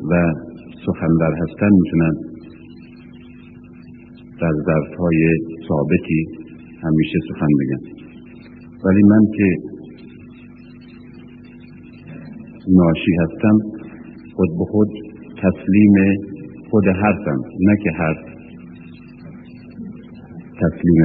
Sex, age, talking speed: male, 50-69, 75 wpm